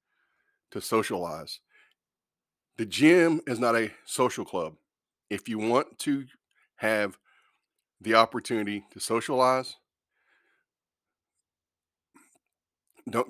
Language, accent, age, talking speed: English, American, 50-69, 85 wpm